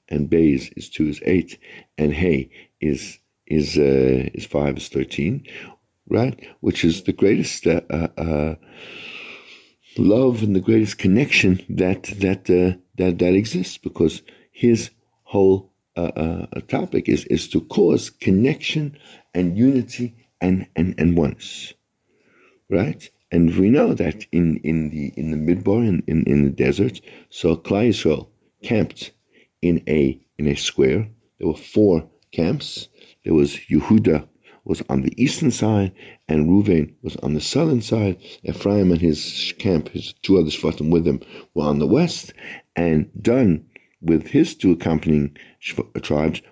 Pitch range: 80-105 Hz